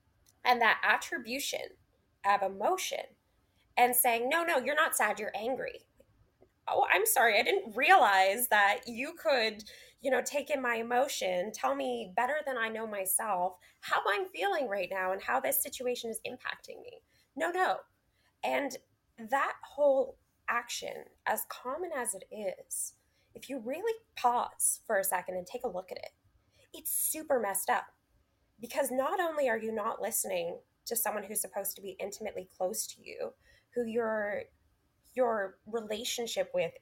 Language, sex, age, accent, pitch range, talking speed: English, female, 20-39, American, 200-290 Hz, 160 wpm